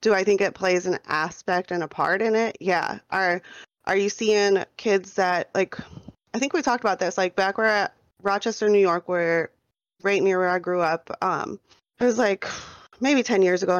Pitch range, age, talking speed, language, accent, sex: 170-190 Hz, 20-39, 210 wpm, English, American, female